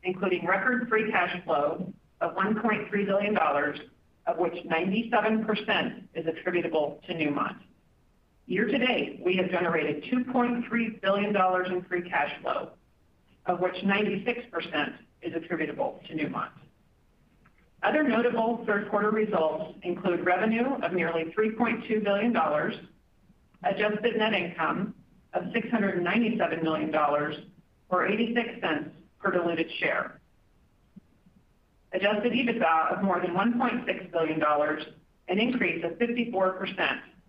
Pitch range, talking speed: 170-220 Hz, 105 wpm